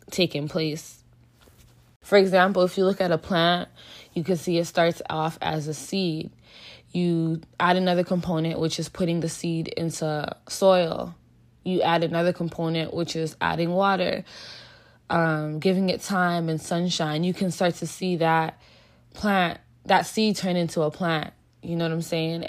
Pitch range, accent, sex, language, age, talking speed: 155-180 Hz, American, female, English, 20-39, 165 wpm